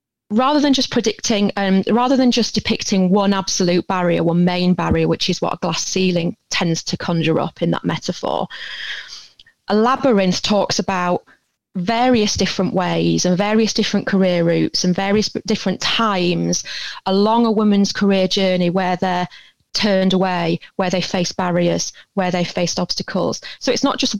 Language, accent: English, British